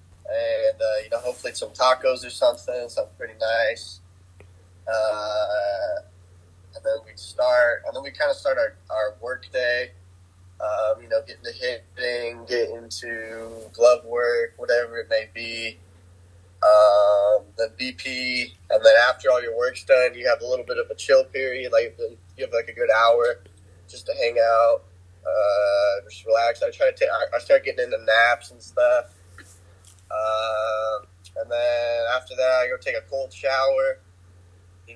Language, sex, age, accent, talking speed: English, male, 20-39, American, 170 wpm